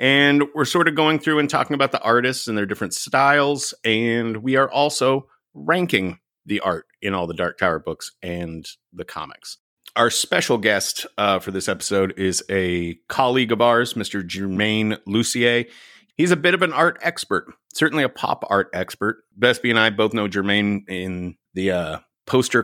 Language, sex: English, male